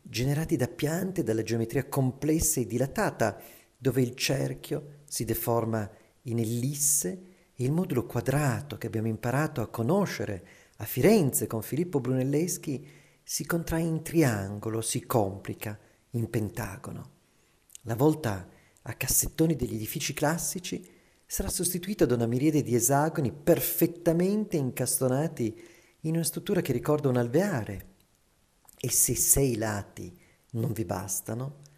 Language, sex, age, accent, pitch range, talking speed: Italian, male, 40-59, native, 115-155 Hz, 125 wpm